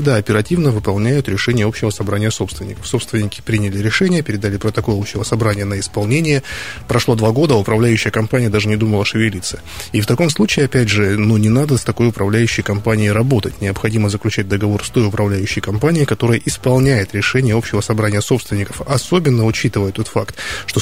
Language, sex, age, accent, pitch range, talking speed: Russian, male, 20-39, native, 105-130 Hz, 160 wpm